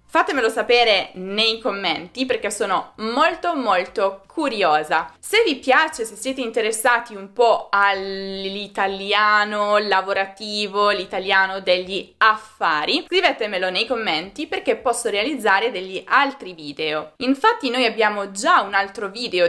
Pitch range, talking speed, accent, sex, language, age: 185-250 Hz, 115 wpm, native, female, Italian, 20-39